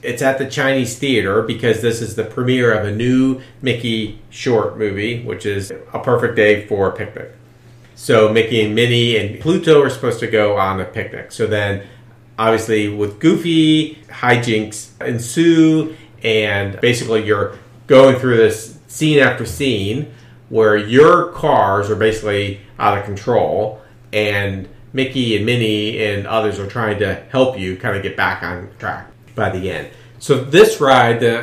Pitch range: 105-125 Hz